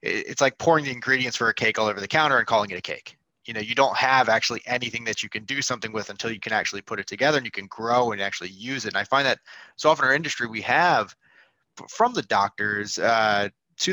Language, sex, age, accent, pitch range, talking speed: English, male, 20-39, American, 110-140 Hz, 265 wpm